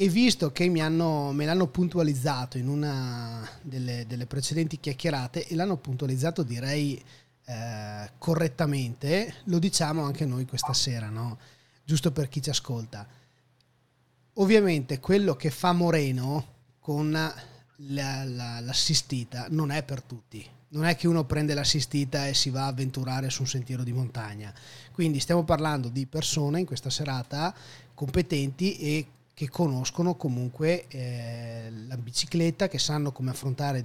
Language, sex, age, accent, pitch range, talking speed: Italian, male, 30-49, native, 125-155 Hz, 135 wpm